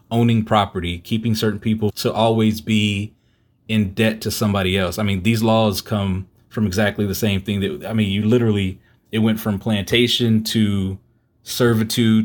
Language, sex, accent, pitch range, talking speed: English, male, American, 95-110 Hz, 165 wpm